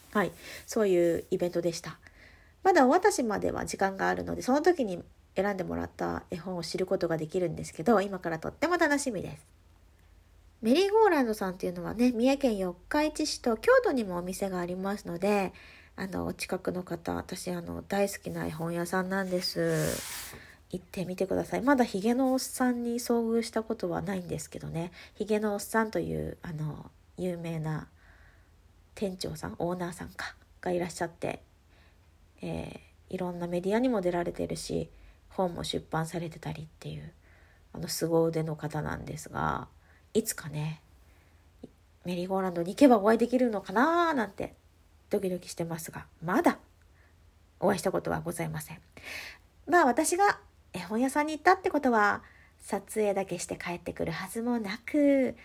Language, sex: Japanese, female